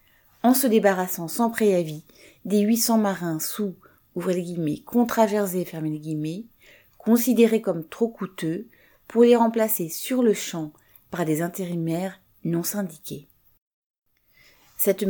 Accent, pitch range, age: French, 165-210 Hz, 30-49